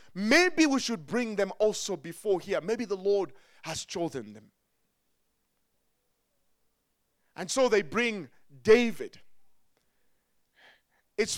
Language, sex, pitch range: English, male, 220-285 Hz